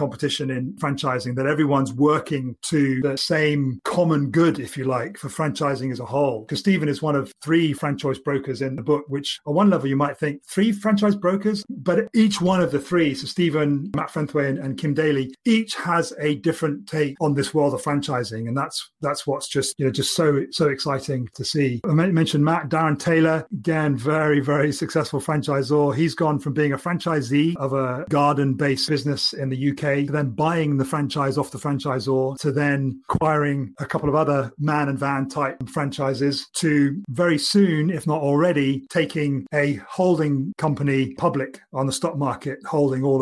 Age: 30-49